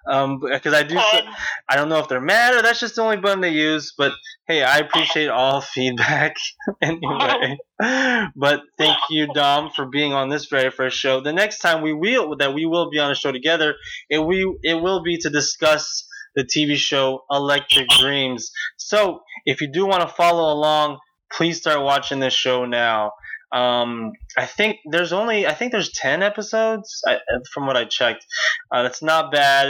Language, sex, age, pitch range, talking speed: English, male, 20-39, 130-165 Hz, 190 wpm